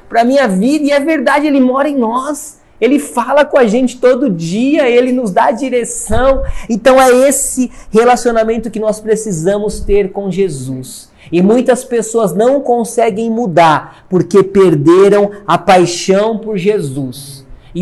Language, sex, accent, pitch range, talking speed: Portuguese, male, Brazilian, 175-225 Hz, 150 wpm